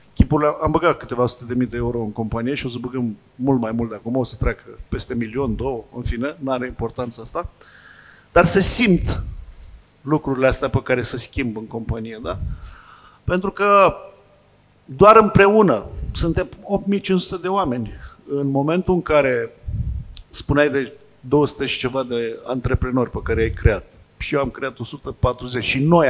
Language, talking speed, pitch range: Romanian, 170 wpm, 120-160 Hz